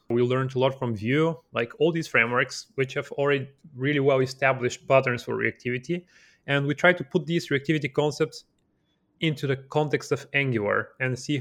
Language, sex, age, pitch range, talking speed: English, male, 30-49, 125-140 Hz, 180 wpm